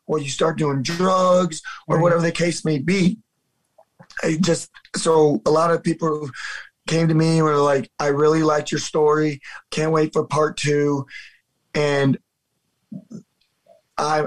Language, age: English, 20-39